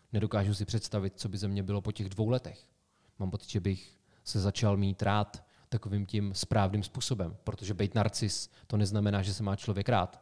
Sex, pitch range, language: male, 100-125 Hz, Czech